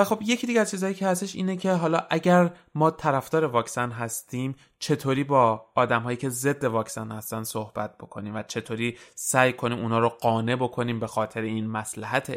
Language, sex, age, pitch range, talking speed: Persian, male, 30-49, 110-145 Hz, 180 wpm